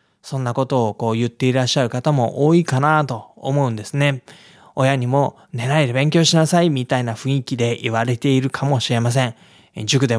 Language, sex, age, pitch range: Japanese, male, 20-39, 115-160 Hz